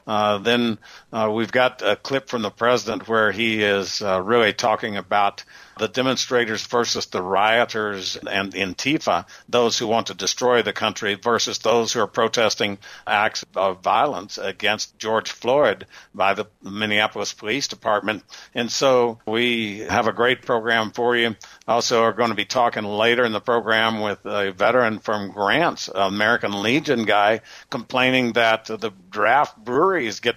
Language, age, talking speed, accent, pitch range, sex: English, 60-79, 160 wpm, American, 110-125 Hz, male